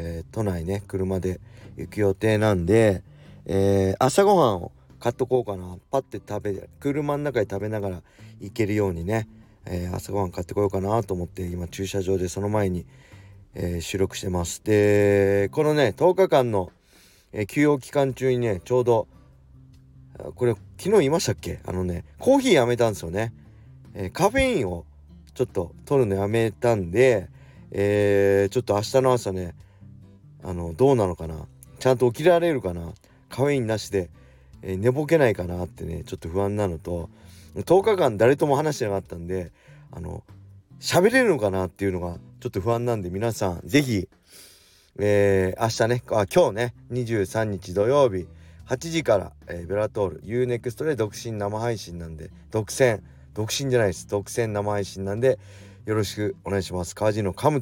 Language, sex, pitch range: Japanese, male, 90-120 Hz